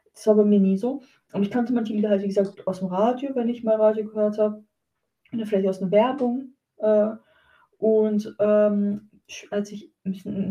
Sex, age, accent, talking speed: female, 20-39, German, 205 wpm